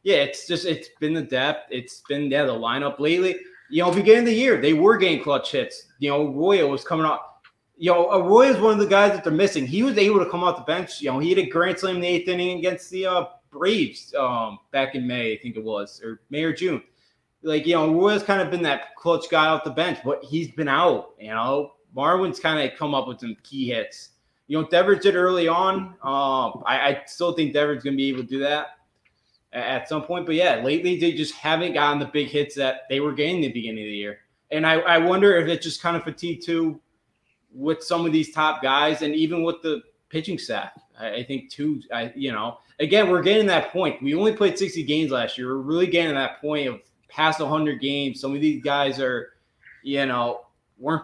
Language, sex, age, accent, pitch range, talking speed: English, male, 20-39, American, 135-175 Hz, 240 wpm